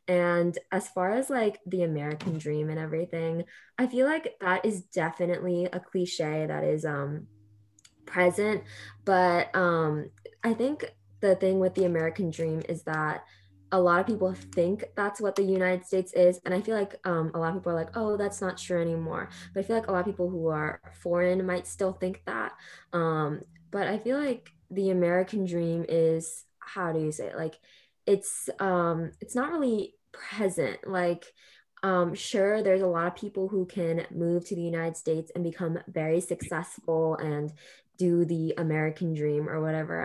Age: 20-39